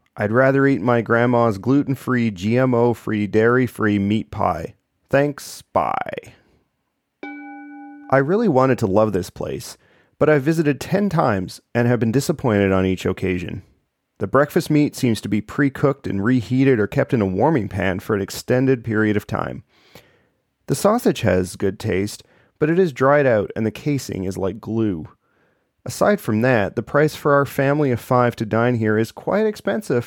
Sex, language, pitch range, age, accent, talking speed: male, English, 105-140 Hz, 30-49, American, 170 wpm